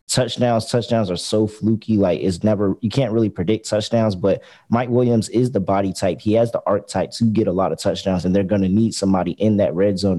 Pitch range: 95-115 Hz